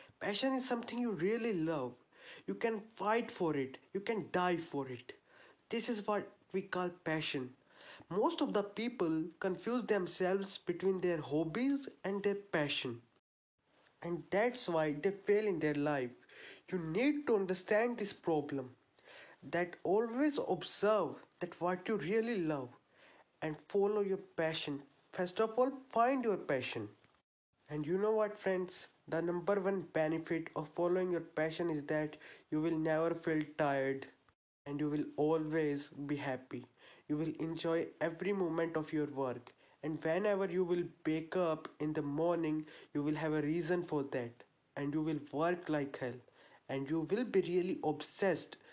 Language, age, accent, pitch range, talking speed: English, 20-39, Indian, 150-195 Hz, 160 wpm